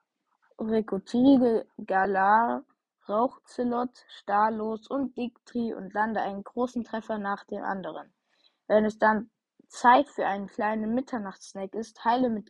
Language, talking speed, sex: English, 120 wpm, female